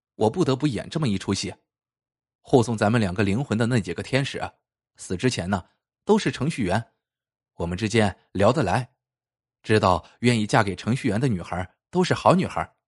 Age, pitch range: 20-39, 100-130 Hz